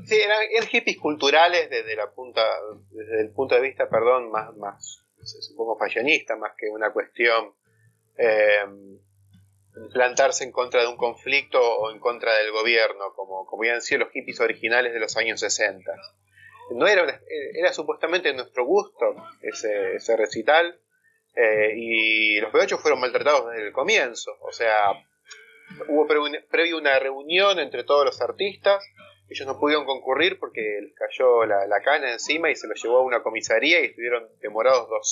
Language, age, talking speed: Spanish, 30-49, 165 wpm